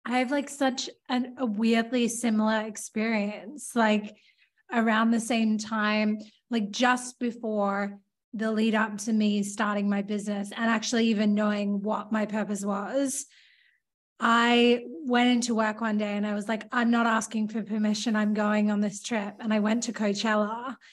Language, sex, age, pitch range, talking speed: English, female, 20-39, 215-250 Hz, 165 wpm